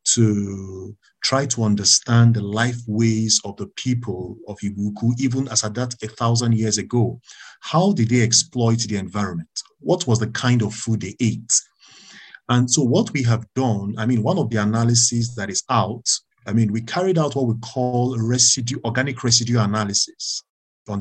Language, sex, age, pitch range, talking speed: English, male, 50-69, 105-125 Hz, 175 wpm